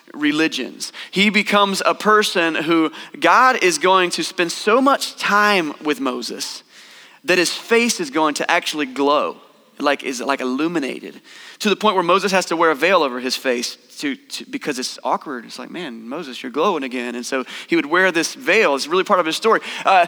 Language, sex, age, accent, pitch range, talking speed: English, male, 30-49, American, 140-200 Hz, 200 wpm